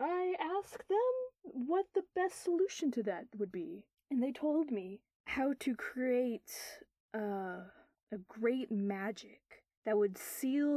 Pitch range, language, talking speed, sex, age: 200-275 Hz, English, 140 wpm, female, 20-39